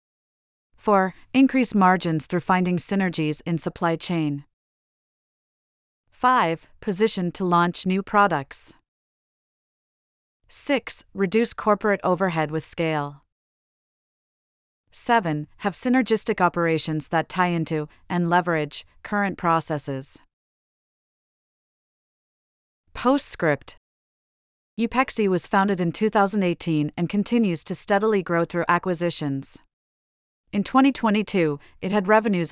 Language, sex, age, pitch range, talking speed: English, female, 40-59, 160-210 Hz, 90 wpm